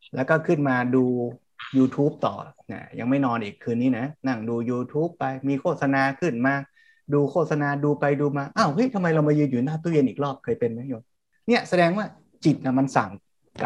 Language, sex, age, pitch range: Thai, male, 20-39, 130-160 Hz